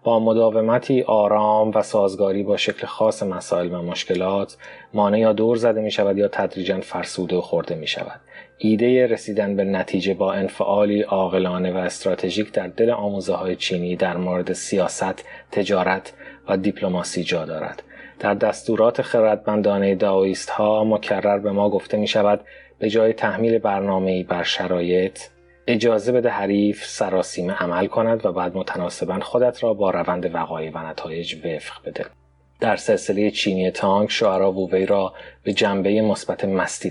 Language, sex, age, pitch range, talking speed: Persian, male, 30-49, 95-115 Hz, 150 wpm